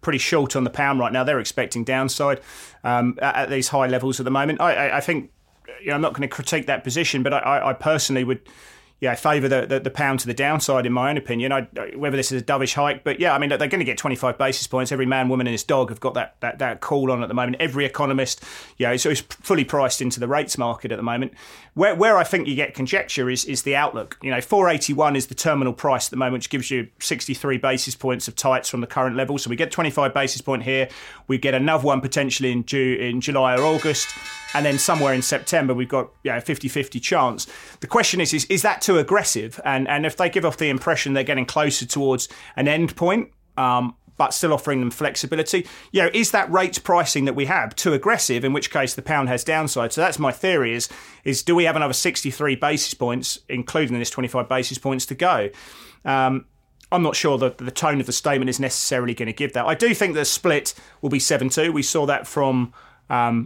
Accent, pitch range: British, 125-145 Hz